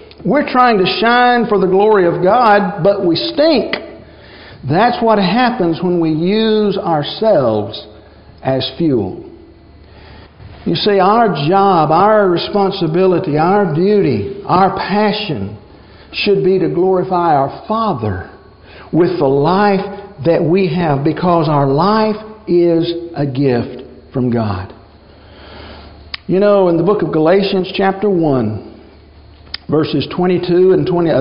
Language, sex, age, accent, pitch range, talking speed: English, male, 60-79, American, 155-205 Hz, 120 wpm